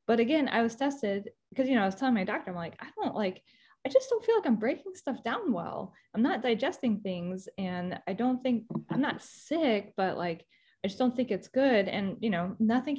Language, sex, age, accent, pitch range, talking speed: English, female, 10-29, American, 185-245 Hz, 235 wpm